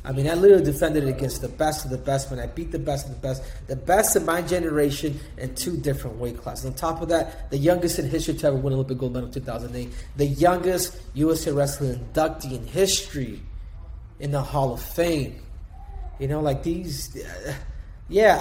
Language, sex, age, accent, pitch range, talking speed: English, male, 30-49, American, 125-170 Hz, 210 wpm